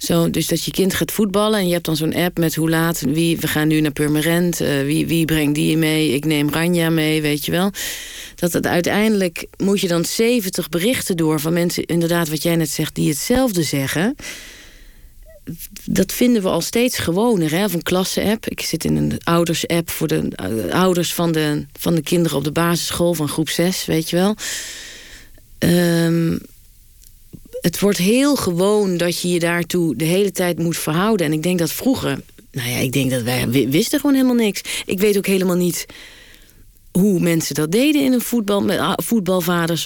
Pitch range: 165-205 Hz